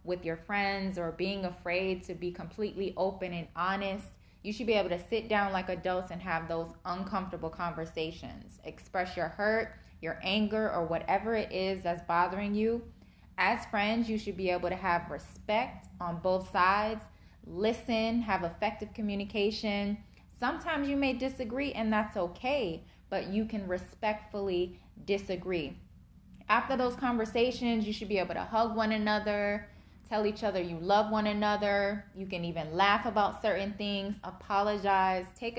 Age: 20-39